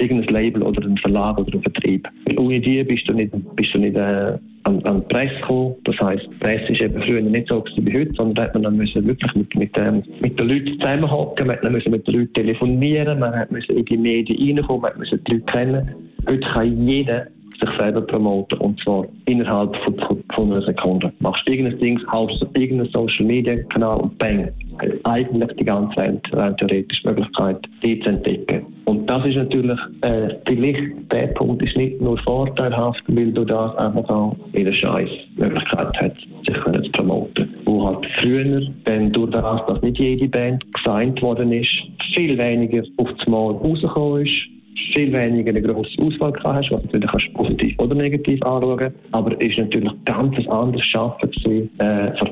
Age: 50-69